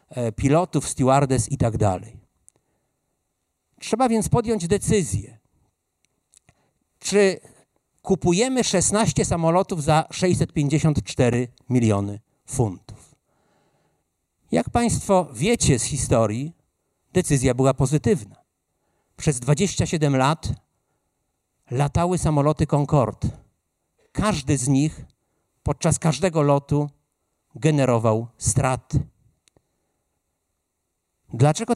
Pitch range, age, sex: 130-190 Hz, 50-69, male